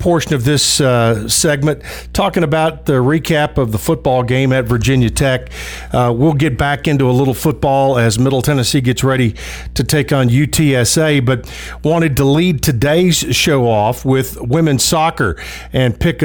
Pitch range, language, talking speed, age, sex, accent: 125-160 Hz, English, 165 wpm, 50-69, male, American